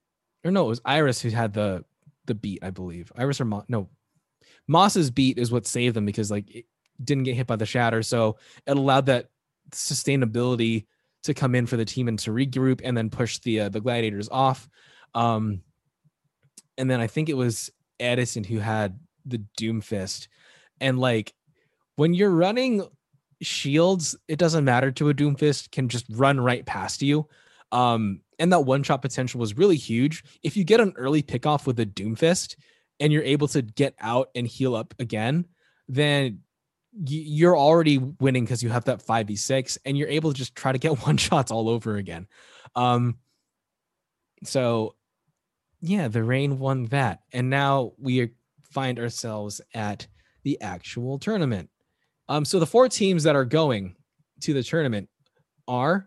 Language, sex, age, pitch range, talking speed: English, male, 20-39, 115-150 Hz, 175 wpm